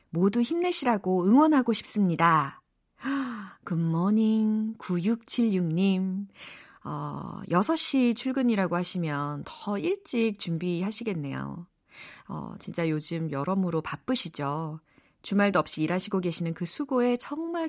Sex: female